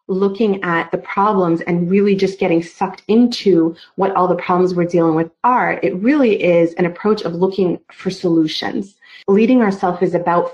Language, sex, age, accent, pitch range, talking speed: English, female, 30-49, American, 180-220 Hz, 175 wpm